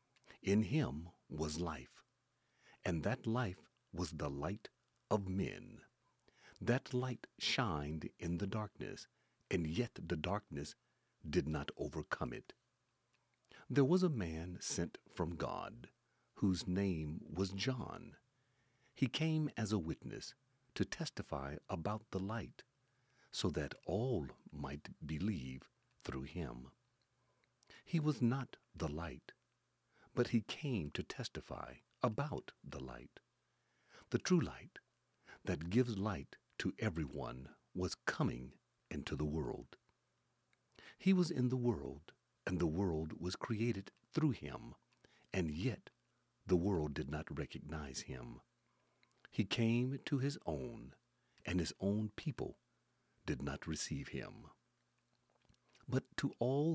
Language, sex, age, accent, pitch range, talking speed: English, male, 50-69, American, 80-125 Hz, 125 wpm